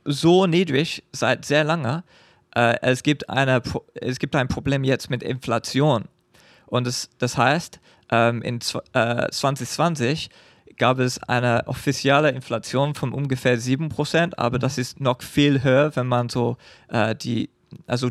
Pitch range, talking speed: 125-150 Hz, 125 wpm